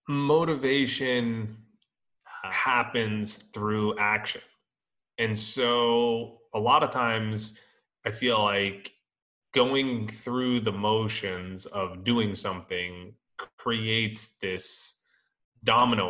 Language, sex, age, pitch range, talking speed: English, male, 20-39, 100-120 Hz, 85 wpm